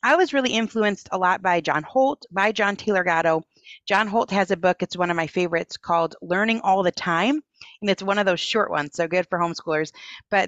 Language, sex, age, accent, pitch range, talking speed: English, female, 30-49, American, 190-290 Hz, 230 wpm